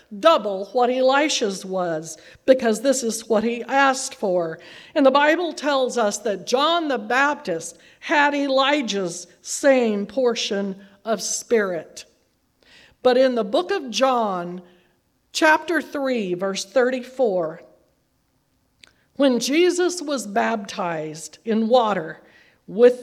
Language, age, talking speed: English, 50-69, 110 wpm